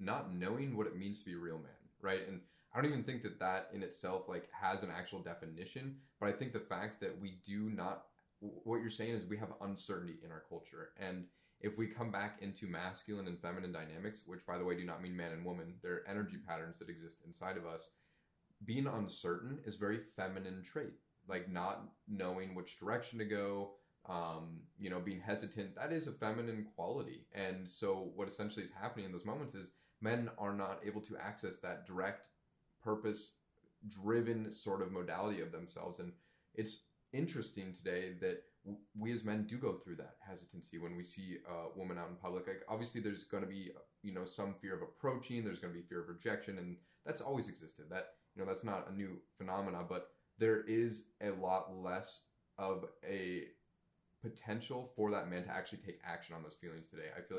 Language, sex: English, male